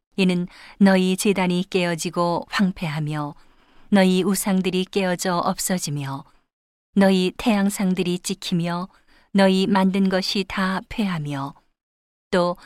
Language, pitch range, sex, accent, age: Korean, 175-200 Hz, female, native, 40-59